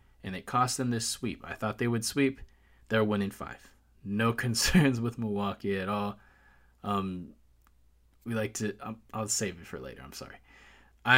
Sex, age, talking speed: male, 20-39, 165 wpm